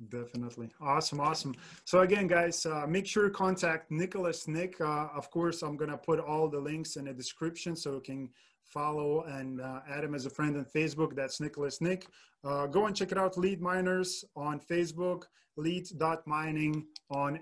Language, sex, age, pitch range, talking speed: English, male, 20-39, 140-165 Hz, 185 wpm